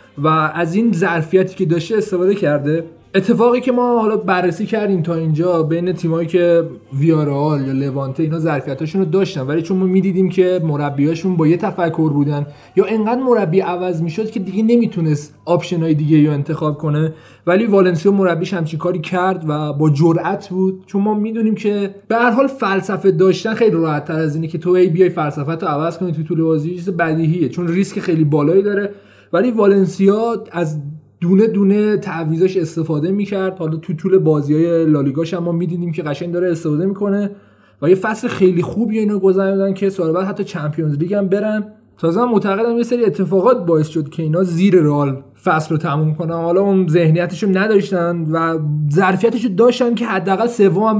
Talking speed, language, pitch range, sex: 180 wpm, Persian, 160-195 Hz, male